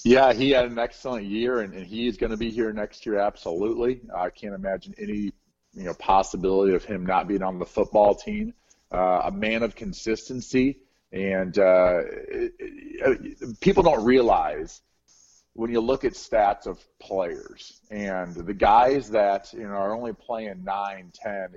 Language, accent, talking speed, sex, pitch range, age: English, American, 170 wpm, male, 100-130 Hz, 40-59